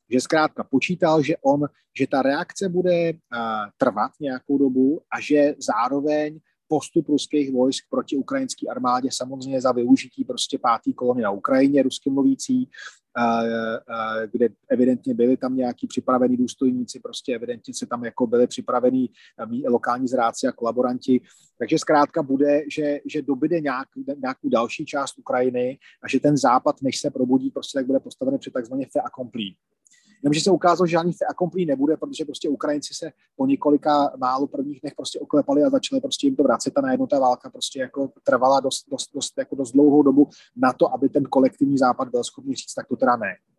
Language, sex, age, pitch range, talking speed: Slovak, male, 30-49, 130-180 Hz, 175 wpm